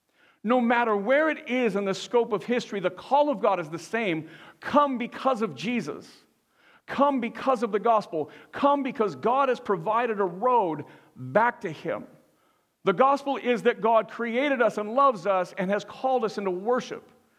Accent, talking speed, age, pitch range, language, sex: American, 180 wpm, 50-69, 190-245 Hz, English, male